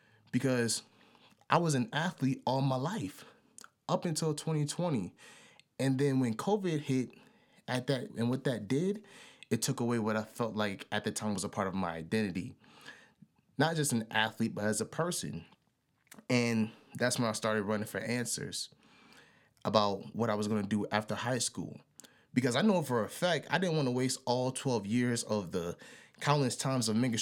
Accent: American